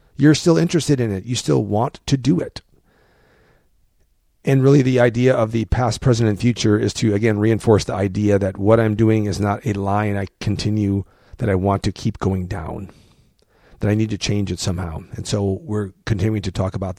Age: 40-59